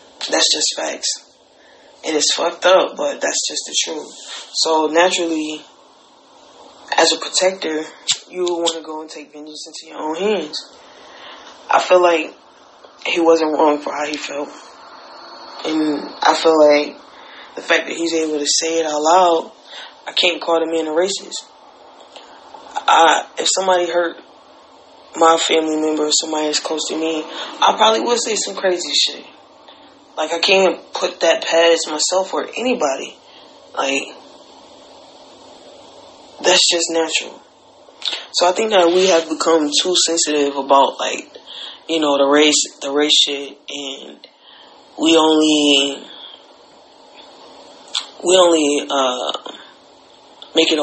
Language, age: English, 20-39